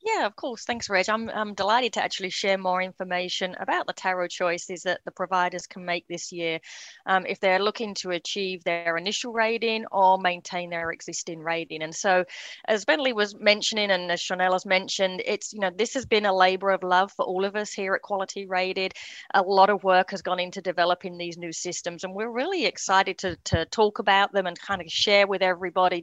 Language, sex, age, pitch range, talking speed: English, female, 30-49, 180-215 Hz, 215 wpm